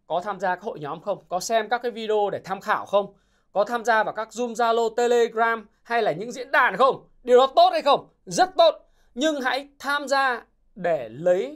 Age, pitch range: 20-39, 200-280 Hz